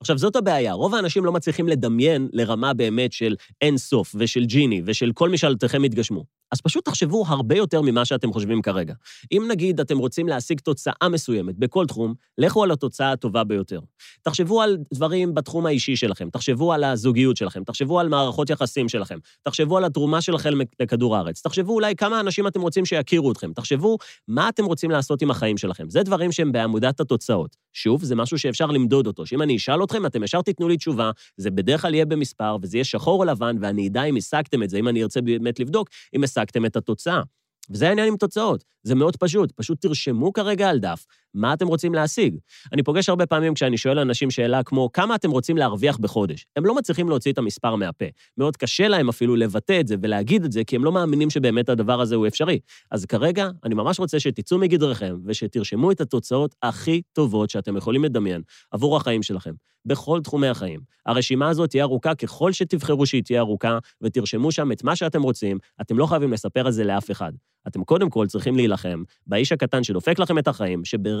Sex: male